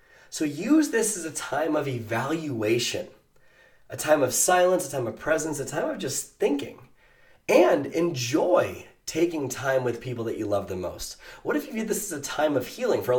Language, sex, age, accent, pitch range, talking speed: English, male, 20-39, American, 115-155 Hz, 200 wpm